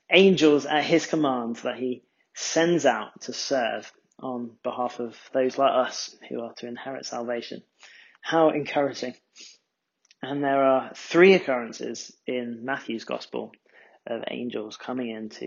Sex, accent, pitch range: male, British, 130-165 Hz